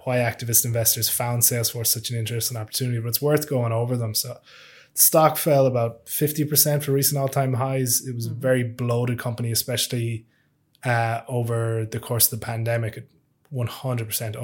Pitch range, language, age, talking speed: 115-135 Hz, English, 20-39, 160 wpm